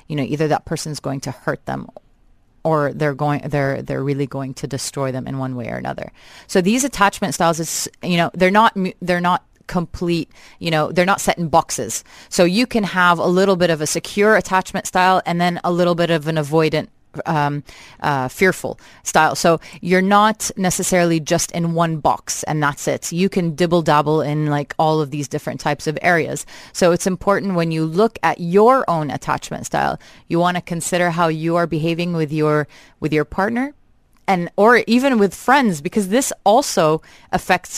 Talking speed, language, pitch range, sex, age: 195 wpm, English, 155-190 Hz, female, 30-49